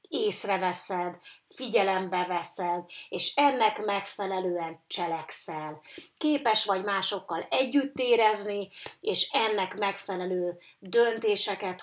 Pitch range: 185-240 Hz